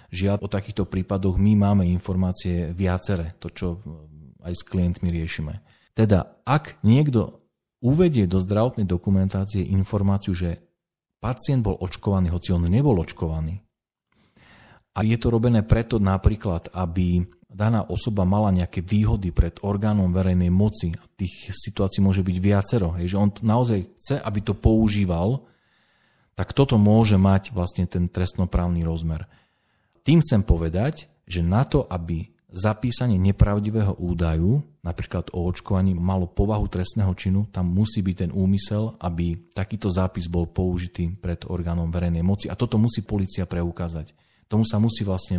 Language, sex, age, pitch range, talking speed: Slovak, male, 40-59, 90-110 Hz, 140 wpm